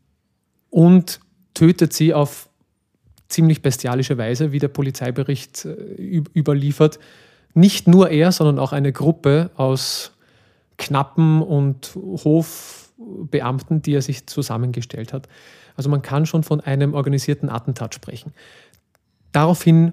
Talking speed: 110 wpm